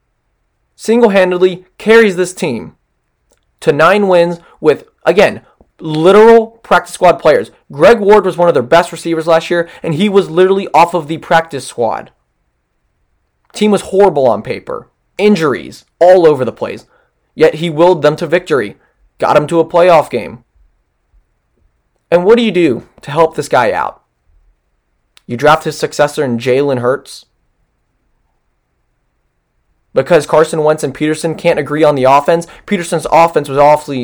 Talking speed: 150 wpm